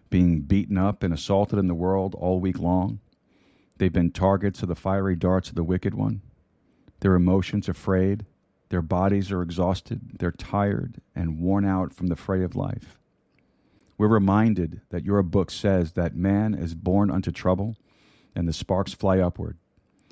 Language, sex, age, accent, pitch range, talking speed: English, male, 40-59, American, 85-100 Hz, 170 wpm